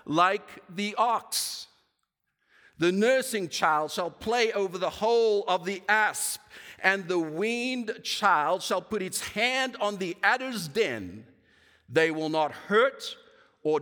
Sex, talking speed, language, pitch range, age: male, 135 wpm, English, 150-220 Hz, 50-69